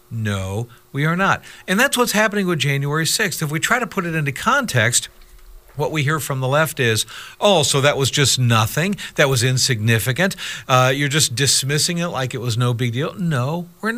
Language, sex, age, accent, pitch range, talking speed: English, male, 50-69, American, 120-160 Hz, 205 wpm